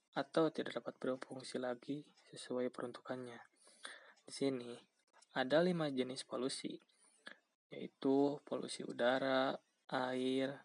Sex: male